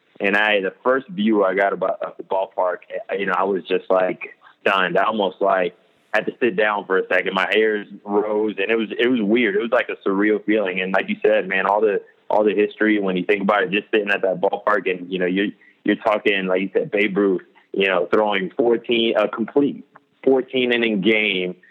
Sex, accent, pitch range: male, American, 95-115 Hz